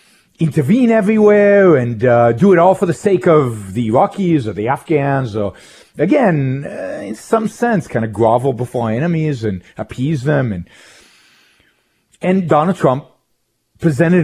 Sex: male